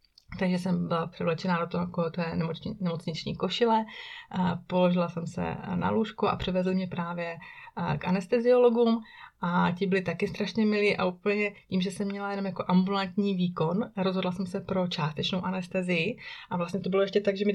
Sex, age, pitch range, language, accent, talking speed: female, 30-49, 180-200 Hz, Czech, native, 170 wpm